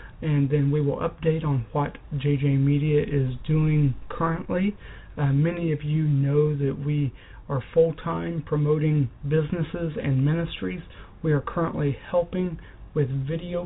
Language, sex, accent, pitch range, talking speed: English, male, American, 140-165 Hz, 135 wpm